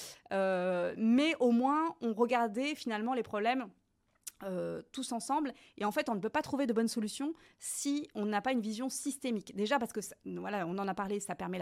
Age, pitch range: 30-49, 200-260 Hz